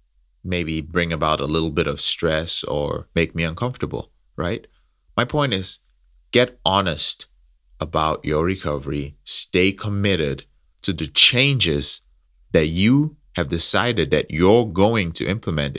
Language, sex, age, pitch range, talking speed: English, male, 30-49, 70-100 Hz, 135 wpm